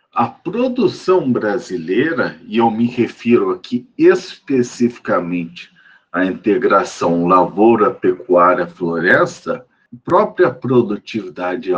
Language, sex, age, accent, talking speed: Portuguese, male, 50-69, Brazilian, 85 wpm